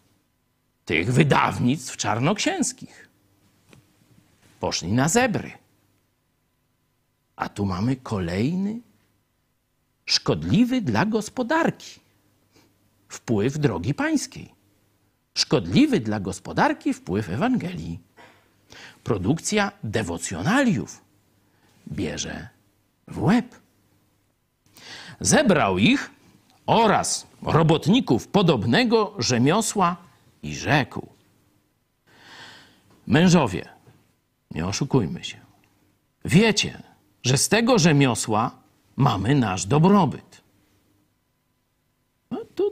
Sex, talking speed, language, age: male, 65 wpm, Polish, 50-69